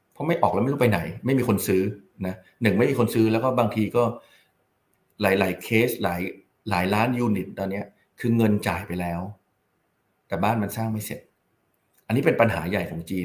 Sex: male